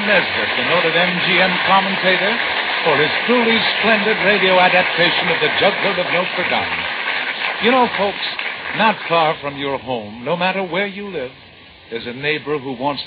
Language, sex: English, male